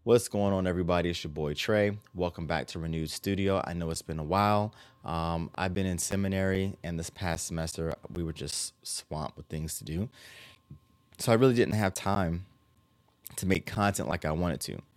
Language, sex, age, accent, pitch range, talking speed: English, male, 20-39, American, 80-95 Hz, 195 wpm